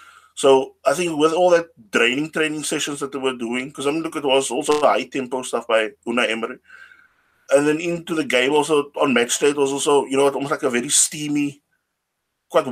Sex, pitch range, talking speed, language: male, 120-155 Hz, 215 wpm, English